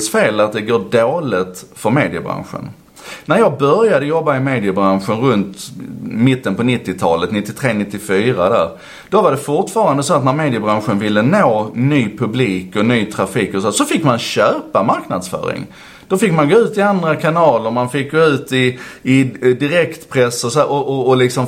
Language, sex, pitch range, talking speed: Swedish, male, 115-190 Hz, 170 wpm